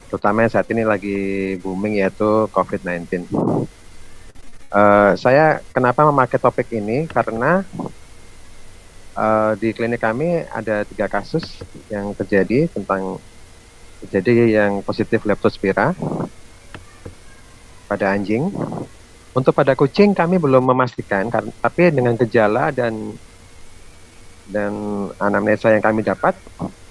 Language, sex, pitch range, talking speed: Indonesian, male, 95-120 Hz, 105 wpm